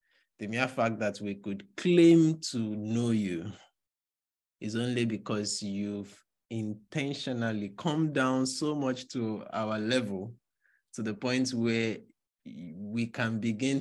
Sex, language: male, English